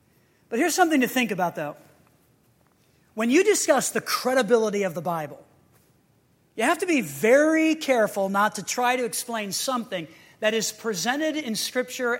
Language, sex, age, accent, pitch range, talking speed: English, male, 40-59, American, 185-255 Hz, 155 wpm